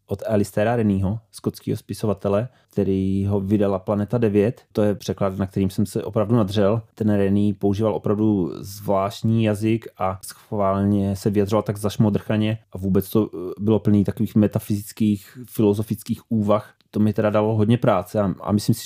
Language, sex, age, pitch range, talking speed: Czech, male, 30-49, 100-110 Hz, 155 wpm